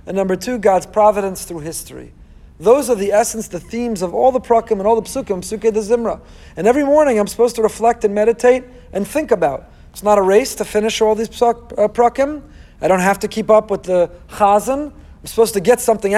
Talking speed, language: 225 wpm, Hebrew